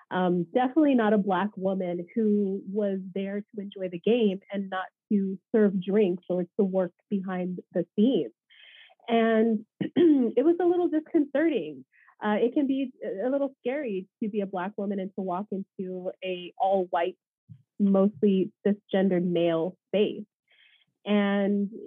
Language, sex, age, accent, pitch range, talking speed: English, female, 30-49, American, 200-245 Hz, 145 wpm